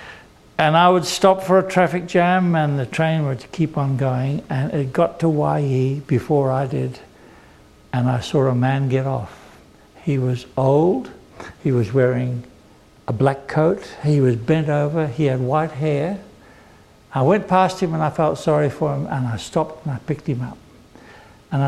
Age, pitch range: 60-79, 130-175 Hz